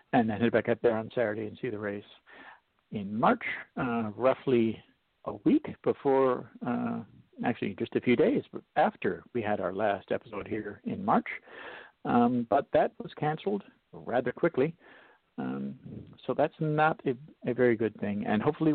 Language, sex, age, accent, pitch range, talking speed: English, male, 50-69, American, 105-130 Hz, 165 wpm